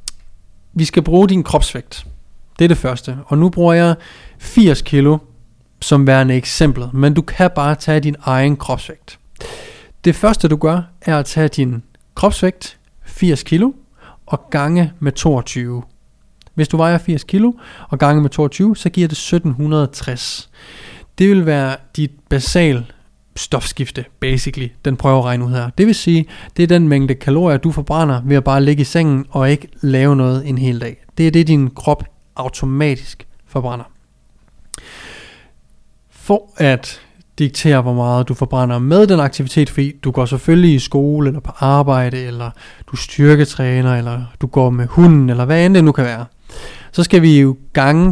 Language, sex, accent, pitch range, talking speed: Danish, male, native, 130-165 Hz, 170 wpm